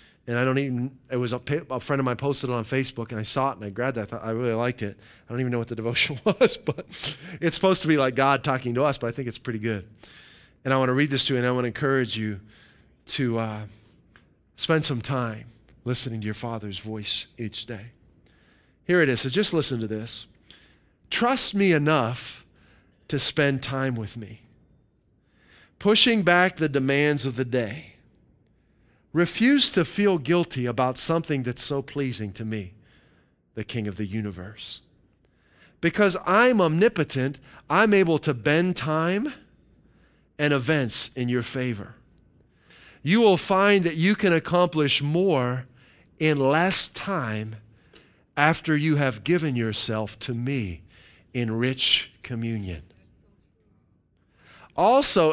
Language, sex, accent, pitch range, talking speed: English, male, American, 110-160 Hz, 165 wpm